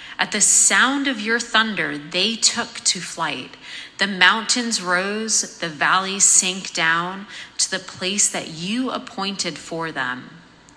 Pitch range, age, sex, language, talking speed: 170-220 Hz, 30-49, female, English, 140 wpm